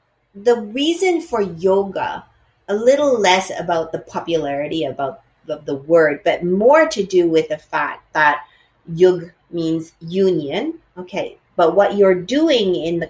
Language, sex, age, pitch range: English, female, 40-59, 155-195 Hz